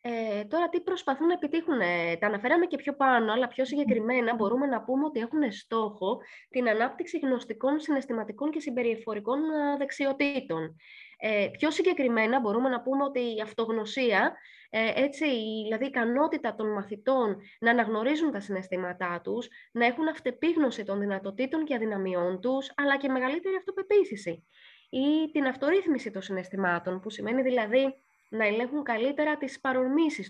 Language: Greek